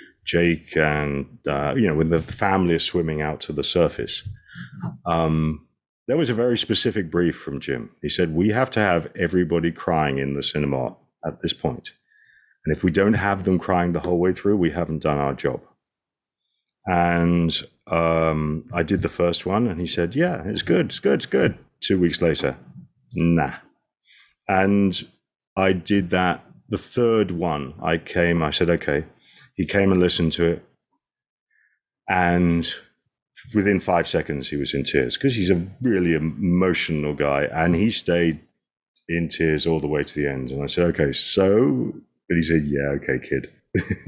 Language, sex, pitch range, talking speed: English, male, 80-100 Hz, 175 wpm